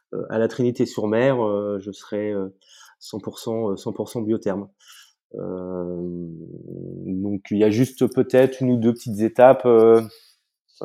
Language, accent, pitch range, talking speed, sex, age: French, French, 100-120 Hz, 125 wpm, male, 20-39